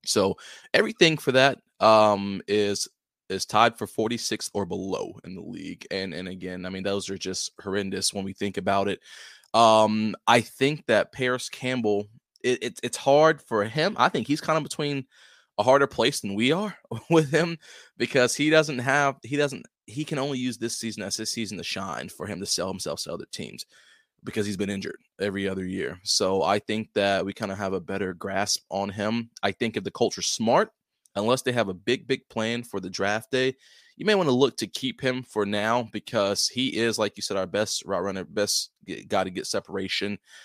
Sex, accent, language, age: male, American, English, 20-39